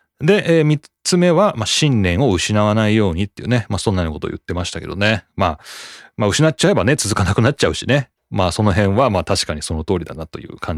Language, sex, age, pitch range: Japanese, male, 30-49, 95-150 Hz